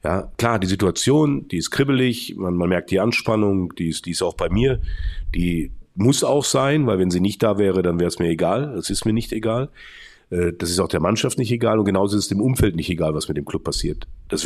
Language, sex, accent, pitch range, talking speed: German, male, German, 95-115 Hz, 250 wpm